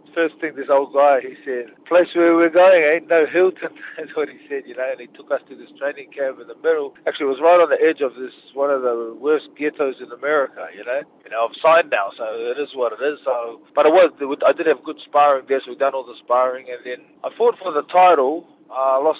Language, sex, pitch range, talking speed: English, male, 130-180 Hz, 275 wpm